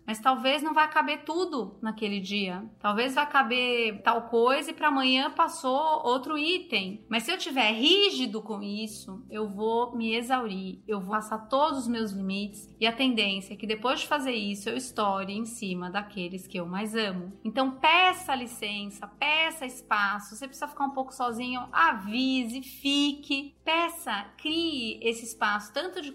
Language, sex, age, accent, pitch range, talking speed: Portuguese, female, 30-49, Brazilian, 215-265 Hz, 170 wpm